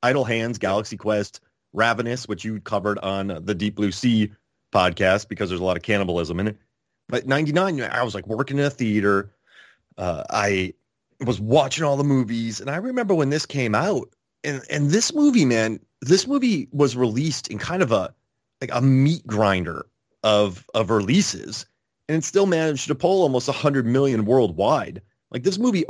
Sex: male